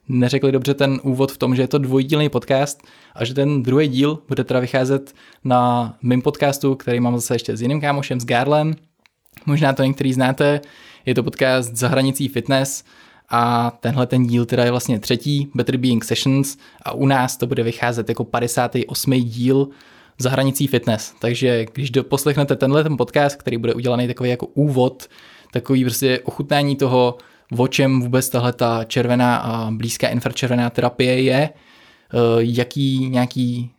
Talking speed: 160 wpm